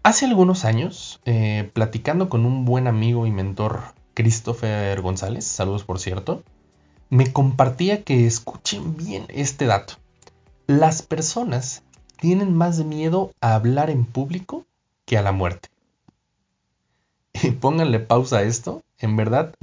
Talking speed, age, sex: 130 wpm, 30-49, male